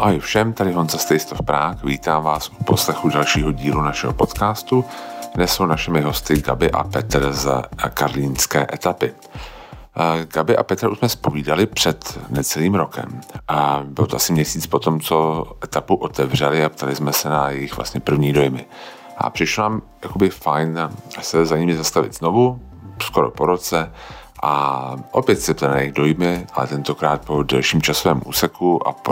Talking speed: 165 wpm